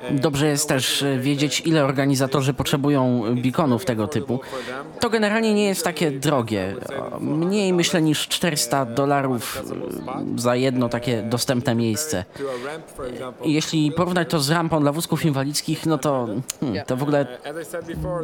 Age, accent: 20-39, native